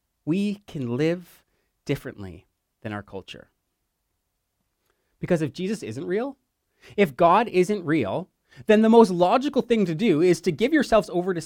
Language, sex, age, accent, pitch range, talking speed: English, male, 30-49, American, 145-205 Hz, 150 wpm